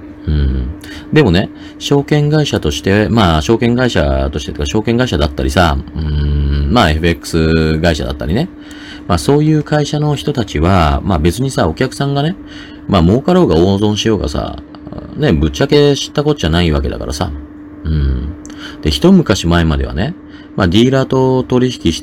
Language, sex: Japanese, male